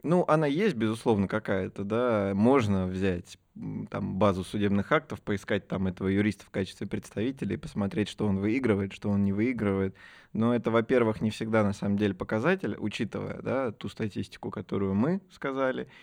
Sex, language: male, Russian